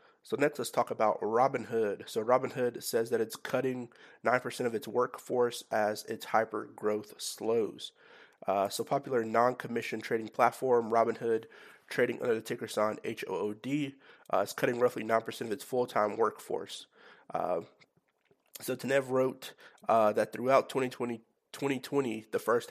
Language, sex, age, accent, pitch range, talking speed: English, male, 30-49, American, 115-135 Hz, 145 wpm